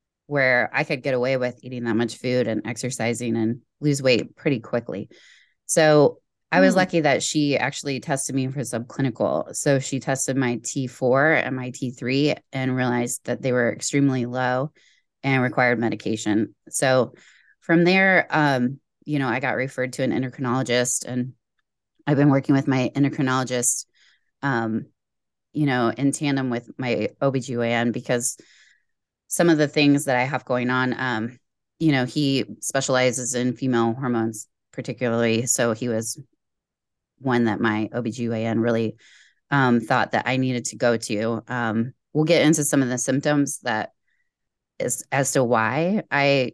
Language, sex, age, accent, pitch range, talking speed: English, female, 20-39, American, 120-140 Hz, 155 wpm